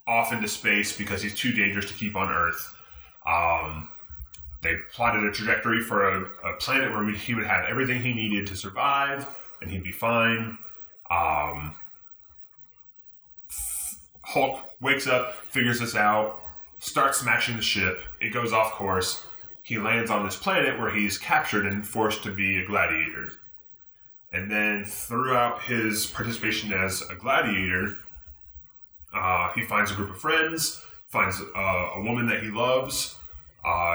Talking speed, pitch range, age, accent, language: 150 wpm, 90-115 Hz, 10-29, American, English